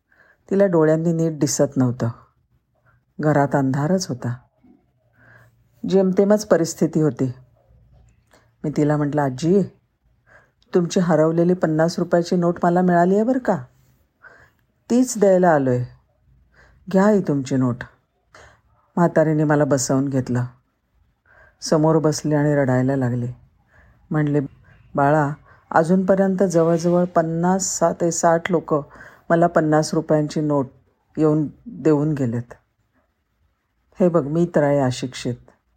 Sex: female